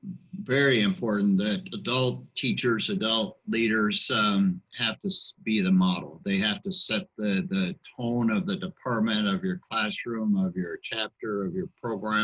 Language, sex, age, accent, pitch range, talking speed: English, male, 50-69, American, 110-140 Hz, 155 wpm